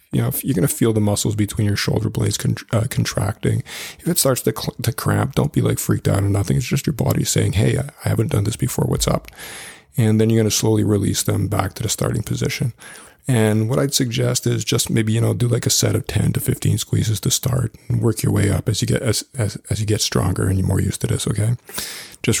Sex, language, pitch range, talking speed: male, English, 105-120 Hz, 255 wpm